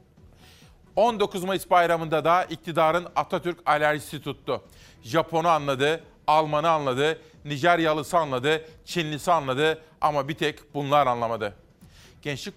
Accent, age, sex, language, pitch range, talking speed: native, 40-59, male, Turkish, 140-165 Hz, 105 wpm